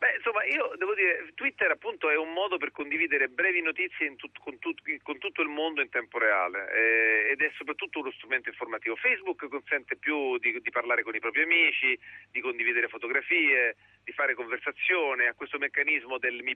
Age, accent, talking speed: 40-59, native, 190 wpm